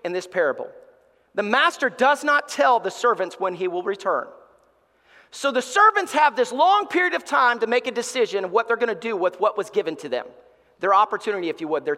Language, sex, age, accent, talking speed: English, male, 40-59, American, 225 wpm